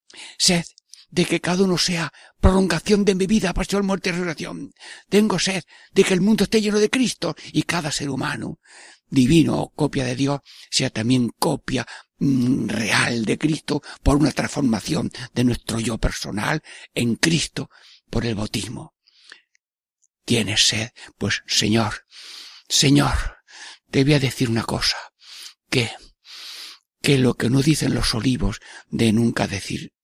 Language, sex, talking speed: Spanish, male, 150 wpm